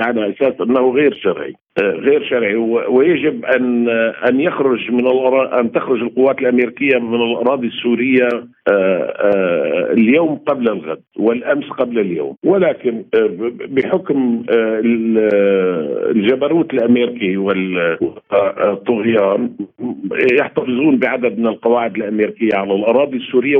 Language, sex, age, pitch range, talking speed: Arabic, male, 50-69, 115-160 Hz, 120 wpm